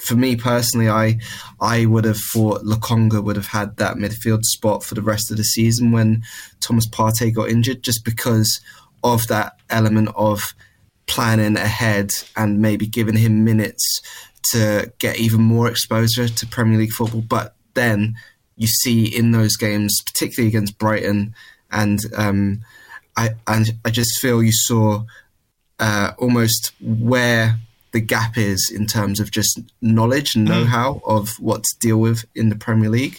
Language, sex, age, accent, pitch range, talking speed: English, male, 20-39, British, 105-115 Hz, 160 wpm